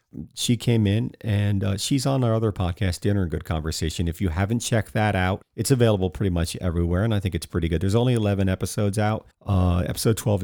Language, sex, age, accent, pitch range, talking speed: English, male, 40-59, American, 90-110 Hz, 225 wpm